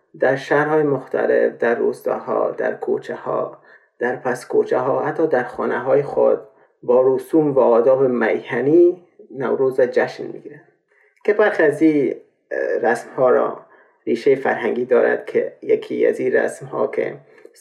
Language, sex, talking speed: Persian, male, 135 wpm